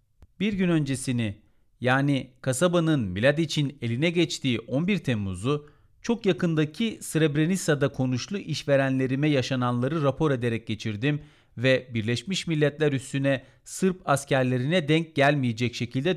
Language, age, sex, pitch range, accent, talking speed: Turkish, 40-59, male, 120-160 Hz, native, 105 wpm